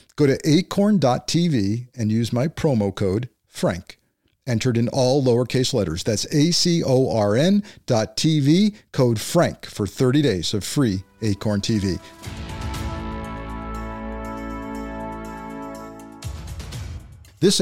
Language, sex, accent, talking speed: English, male, American, 90 wpm